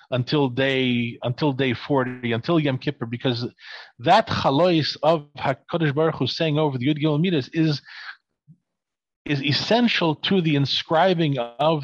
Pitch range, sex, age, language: 125-160 Hz, male, 40-59, English